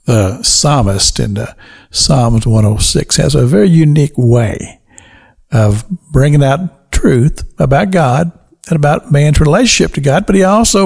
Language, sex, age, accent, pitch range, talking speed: English, male, 60-79, American, 135-185 Hz, 140 wpm